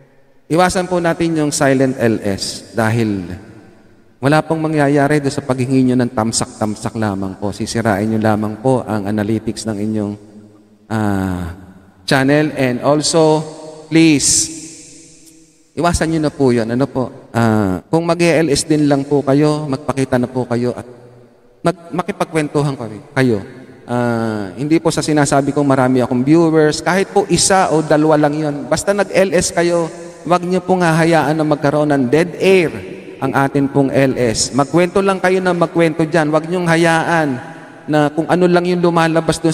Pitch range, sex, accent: 125-165 Hz, male, native